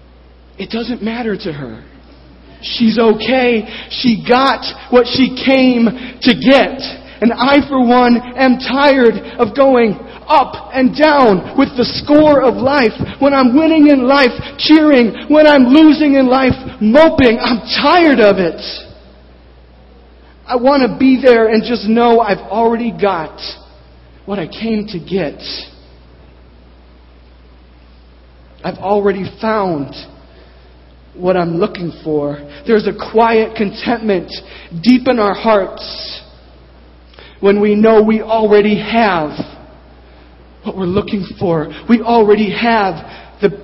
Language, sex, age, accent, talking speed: English, male, 40-59, American, 125 wpm